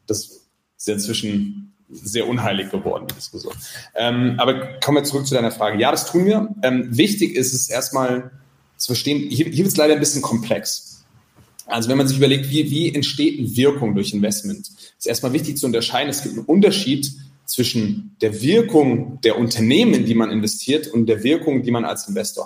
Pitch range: 110-155 Hz